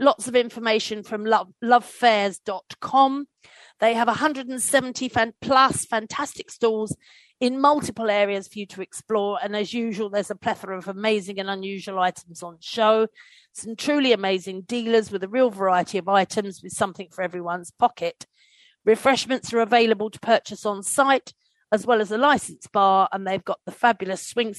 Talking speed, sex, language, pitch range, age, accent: 165 wpm, female, English, 190-245 Hz, 40-59, British